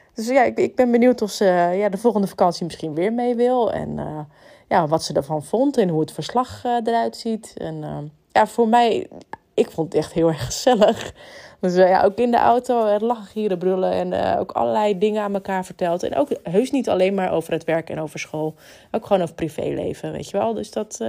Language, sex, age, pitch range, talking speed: Dutch, female, 20-39, 175-240 Hz, 230 wpm